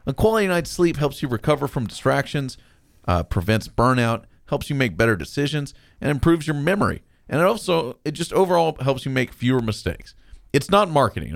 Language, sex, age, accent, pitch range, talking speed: English, male, 40-59, American, 100-145 Hz, 185 wpm